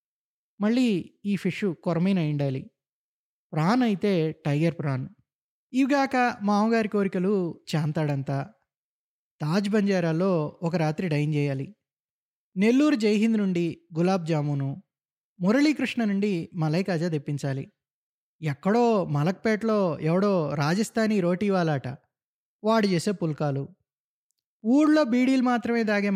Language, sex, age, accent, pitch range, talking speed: Telugu, male, 20-39, native, 155-215 Hz, 90 wpm